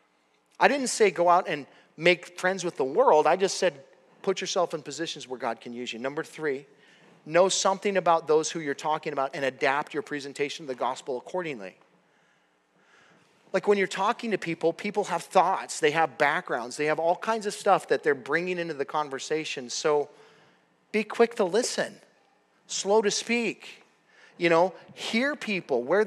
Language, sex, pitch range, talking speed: English, male, 145-215 Hz, 180 wpm